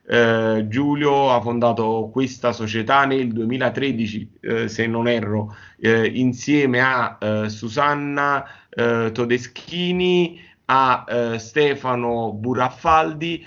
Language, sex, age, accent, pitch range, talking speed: Italian, male, 30-49, native, 115-140 Hz, 105 wpm